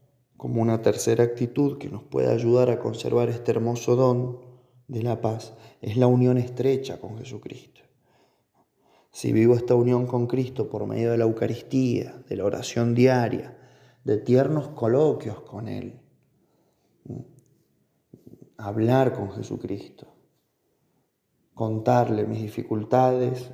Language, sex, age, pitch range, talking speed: Spanish, male, 20-39, 115-125 Hz, 120 wpm